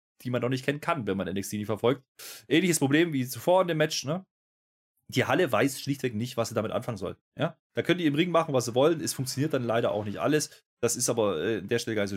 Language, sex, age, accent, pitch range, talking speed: German, male, 30-49, German, 115-150 Hz, 275 wpm